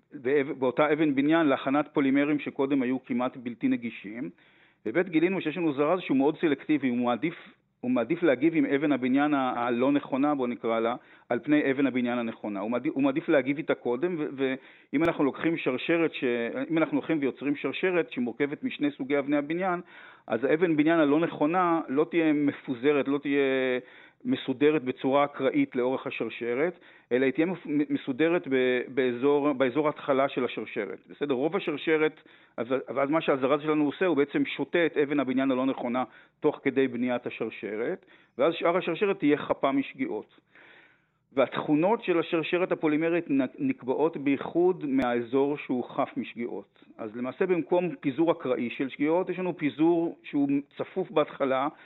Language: Hebrew